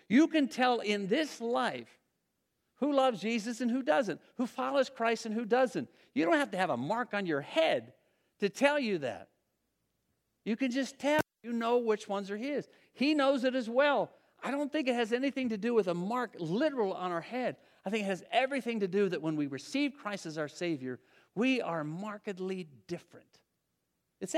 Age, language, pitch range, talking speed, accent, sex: 50-69, English, 170-260 Hz, 200 wpm, American, male